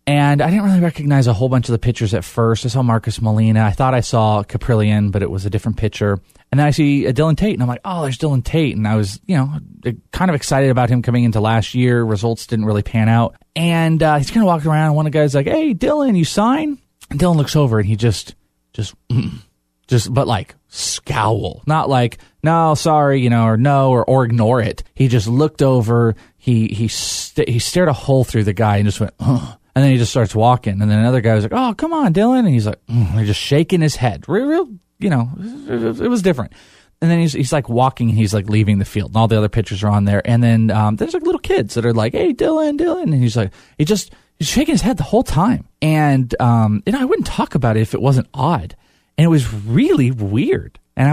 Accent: American